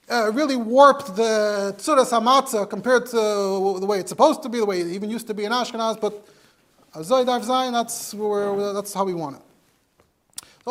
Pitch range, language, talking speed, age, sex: 195-245 Hz, English, 185 wpm, 30-49, male